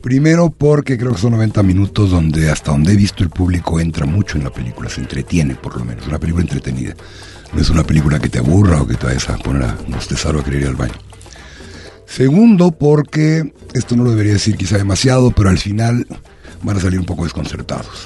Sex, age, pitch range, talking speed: male, 60-79, 75-105 Hz, 220 wpm